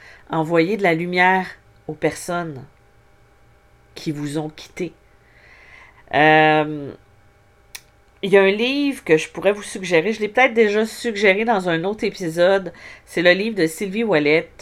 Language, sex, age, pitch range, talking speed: French, female, 40-59, 135-190 Hz, 150 wpm